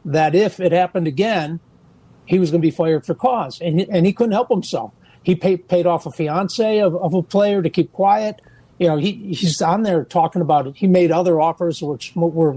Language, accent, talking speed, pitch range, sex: English, American, 230 wpm, 155-185 Hz, male